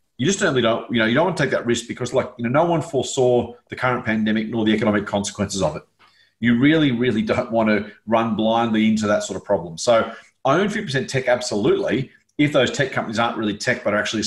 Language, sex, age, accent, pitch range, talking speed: English, male, 30-49, Australian, 105-125 Hz, 240 wpm